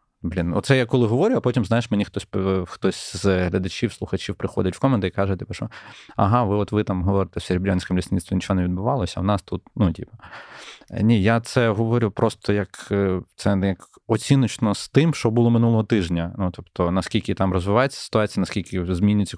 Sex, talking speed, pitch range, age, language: male, 195 wpm, 90-110 Hz, 20-39, Ukrainian